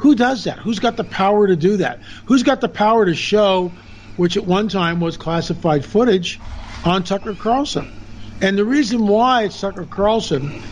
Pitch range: 155-195 Hz